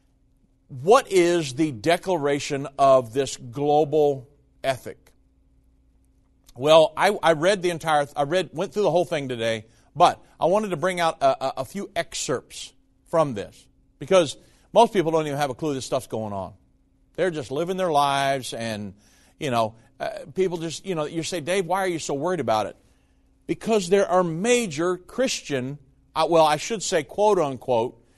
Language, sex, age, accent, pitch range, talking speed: English, male, 50-69, American, 125-180 Hz, 175 wpm